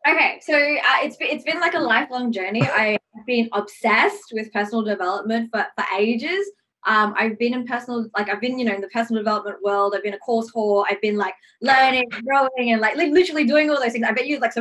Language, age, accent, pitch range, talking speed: English, 20-39, Australian, 215-280 Hz, 230 wpm